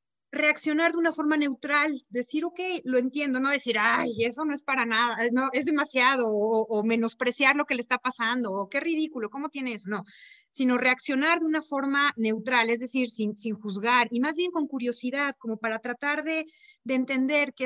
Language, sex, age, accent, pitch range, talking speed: Spanish, female, 30-49, Mexican, 235-295 Hz, 195 wpm